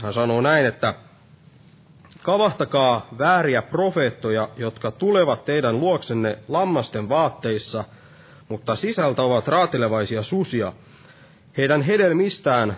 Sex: male